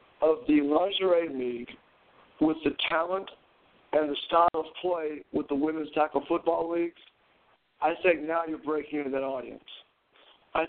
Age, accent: 60-79, American